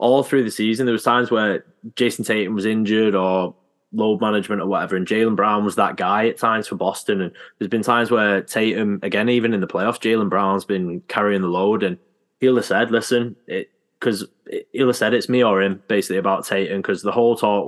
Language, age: English, 10-29